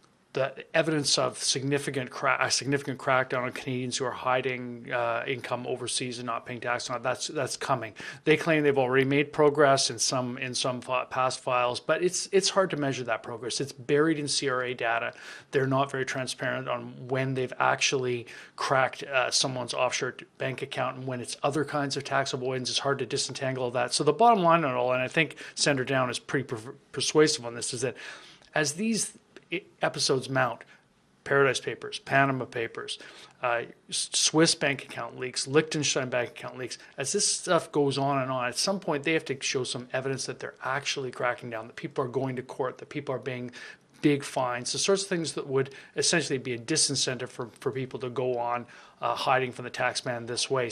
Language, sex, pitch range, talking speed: English, male, 125-150 Hz, 200 wpm